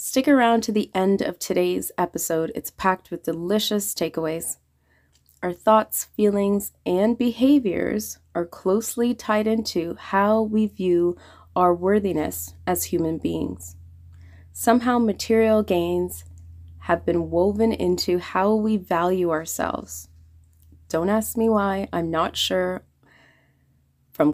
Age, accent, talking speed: 20-39, American, 120 wpm